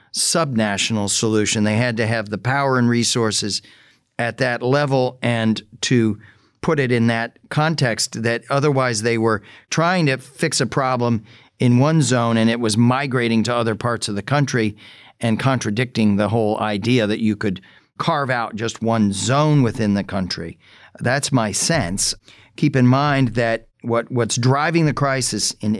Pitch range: 110-130 Hz